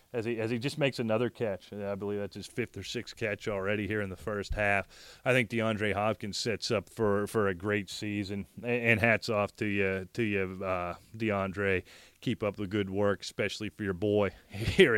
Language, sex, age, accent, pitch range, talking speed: English, male, 30-49, American, 100-120 Hz, 210 wpm